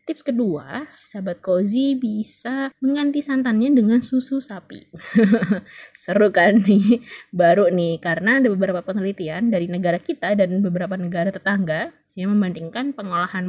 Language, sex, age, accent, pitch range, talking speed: Indonesian, female, 20-39, native, 180-235 Hz, 130 wpm